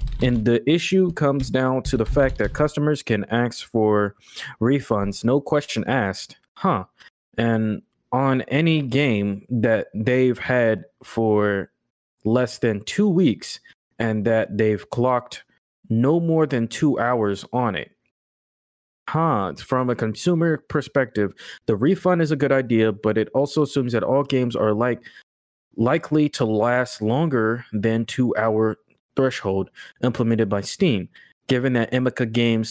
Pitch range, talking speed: 110-135 Hz, 140 wpm